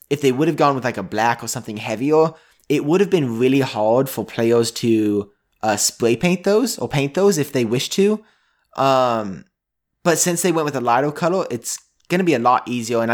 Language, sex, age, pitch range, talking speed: English, male, 20-39, 115-155 Hz, 225 wpm